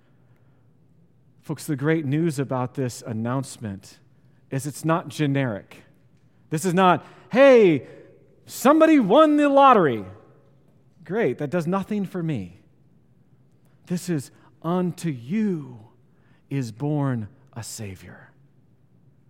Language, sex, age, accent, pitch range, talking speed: English, male, 40-59, American, 130-160 Hz, 105 wpm